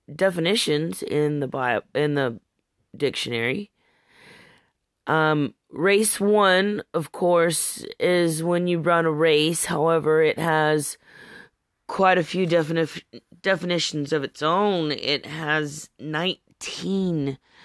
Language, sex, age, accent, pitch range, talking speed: English, female, 30-49, American, 140-180 Hz, 110 wpm